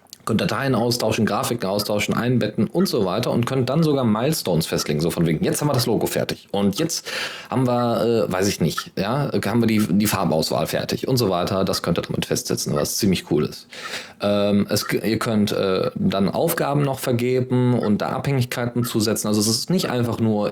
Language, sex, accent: German, male, German